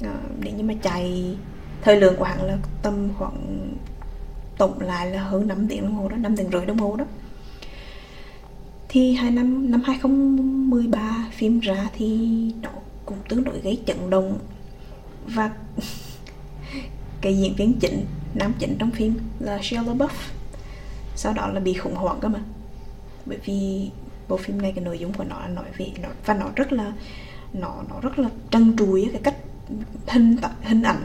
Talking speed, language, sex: 175 wpm, Vietnamese, female